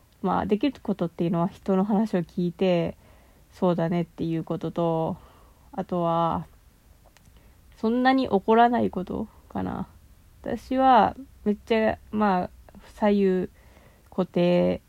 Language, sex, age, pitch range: Japanese, female, 20-39, 175-230 Hz